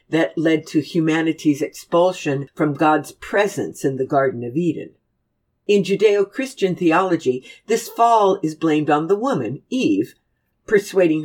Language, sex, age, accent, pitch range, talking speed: English, female, 60-79, American, 150-220 Hz, 135 wpm